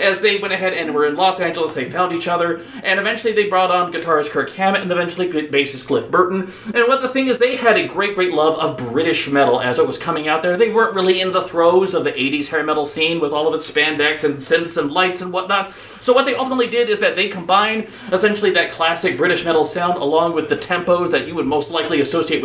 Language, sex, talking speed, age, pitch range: English, male, 250 wpm, 30-49, 160-210 Hz